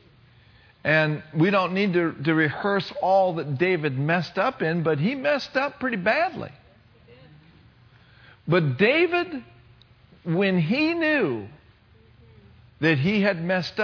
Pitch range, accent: 120-180 Hz, American